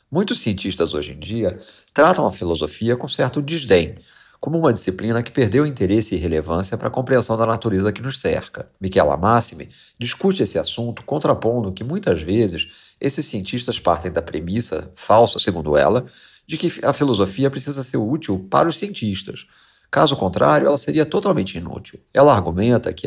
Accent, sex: Brazilian, male